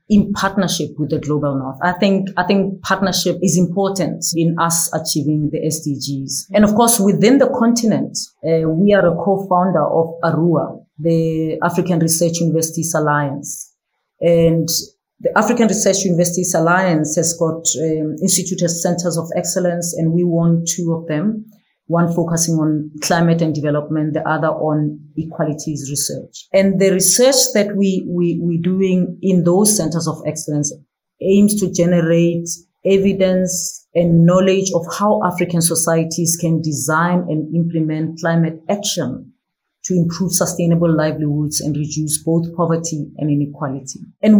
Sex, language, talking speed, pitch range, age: female, English, 145 wpm, 160-190 Hz, 30-49